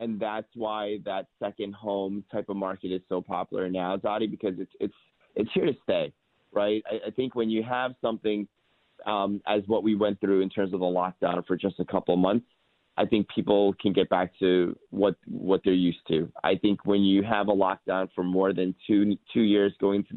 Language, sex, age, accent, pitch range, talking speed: English, male, 30-49, American, 95-110 Hz, 215 wpm